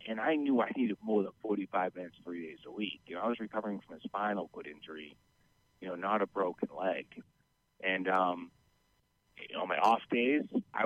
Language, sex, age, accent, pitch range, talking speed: English, male, 40-59, American, 105-135 Hz, 210 wpm